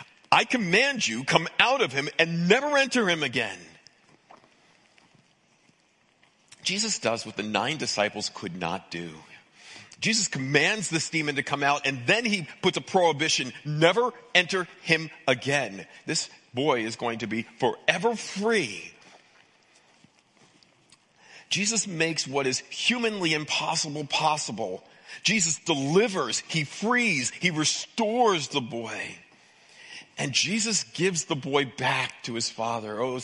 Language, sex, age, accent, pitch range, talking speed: English, male, 40-59, American, 120-175 Hz, 130 wpm